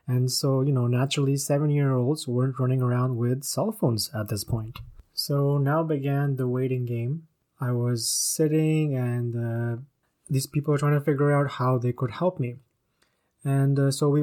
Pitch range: 120-140 Hz